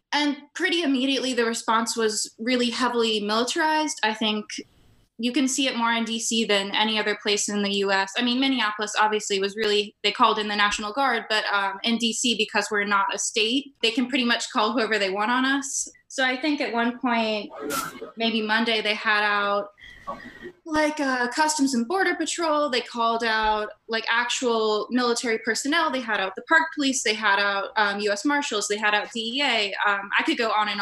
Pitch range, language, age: 210-240 Hz, English, 20-39